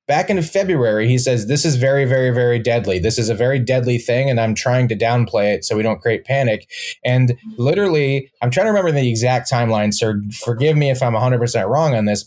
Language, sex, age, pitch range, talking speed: English, male, 20-39, 120-145 Hz, 225 wpm